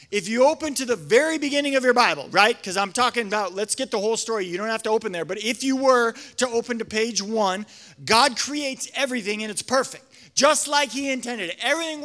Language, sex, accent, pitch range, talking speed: English, male, American, 215-275 Hz, 235 wpm